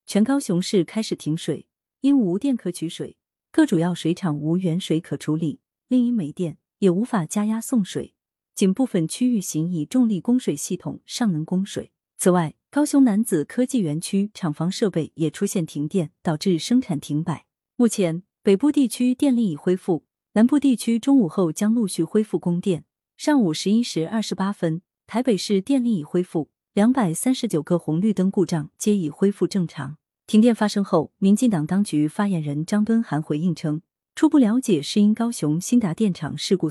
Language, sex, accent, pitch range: Chinese, female, native, 160-220 Hz